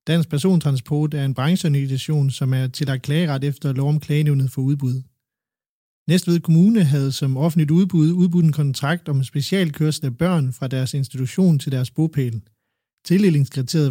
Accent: native